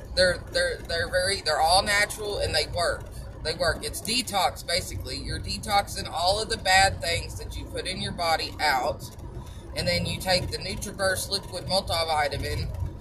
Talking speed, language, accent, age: 170 wpm, English, American, 20-39